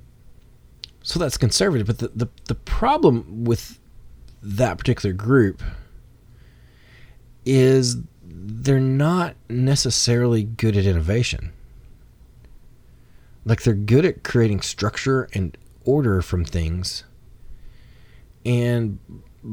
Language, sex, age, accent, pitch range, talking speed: English, male, 30-49, American, 95-120 Hz, 90 wpm